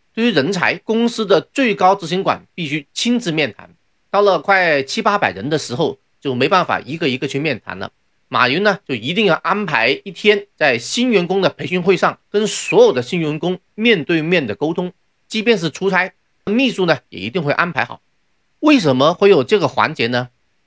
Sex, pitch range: male, 145-215 Hz